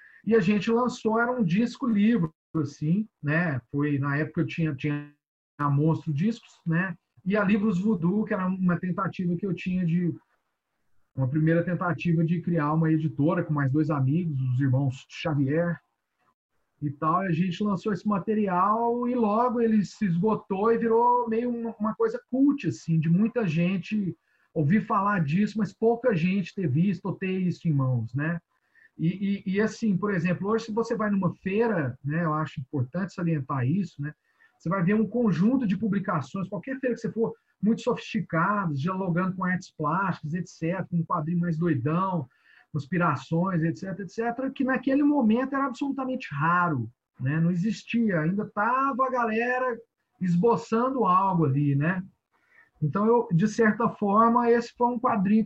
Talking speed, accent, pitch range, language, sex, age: 165 wpm, Brazilian, 165-225 Hz, Portuguese, male, 40-59